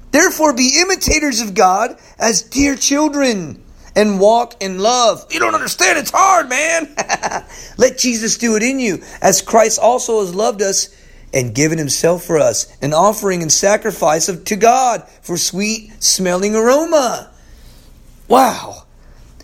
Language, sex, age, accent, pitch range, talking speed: English, male, 40-59, American, 160-225 Hz, 145 wpm